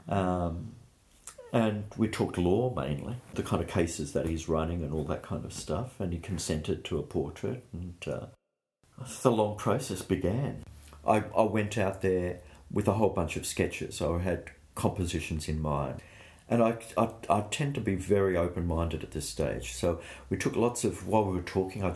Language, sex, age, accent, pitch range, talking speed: English, male, 50-69, Australian, 80-95 Hz, 190 wpm